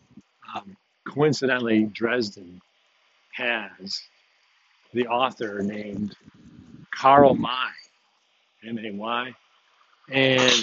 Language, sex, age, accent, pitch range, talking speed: English, male, 50-69, American, 115-135 Hz, 55 wpm